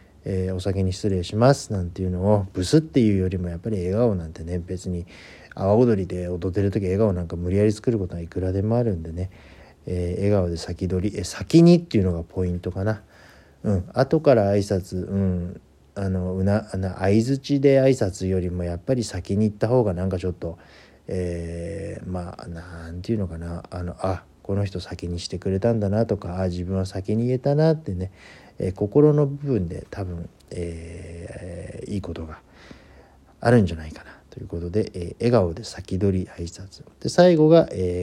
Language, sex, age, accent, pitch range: Japanese, male, 40-59, native, 85-105 Hz